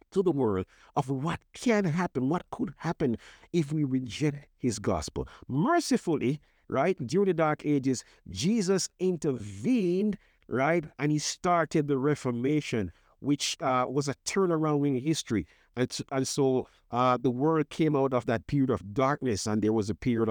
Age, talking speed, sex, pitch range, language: 50-69, 160 wpm, male, 110-150 Hz, English